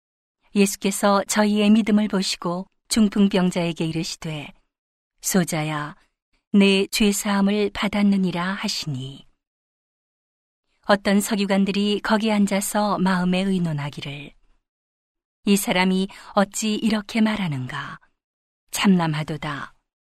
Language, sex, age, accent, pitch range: Korean, female, 40-59, native, 170-210 Hz